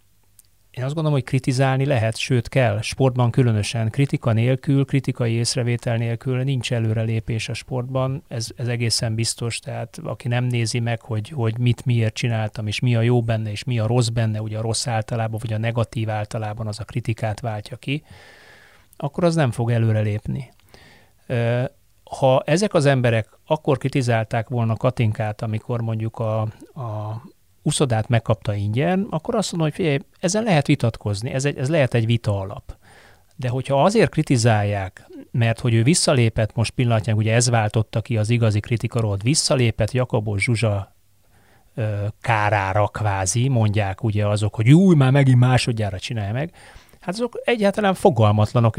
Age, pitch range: 30-49, 110-135 Hz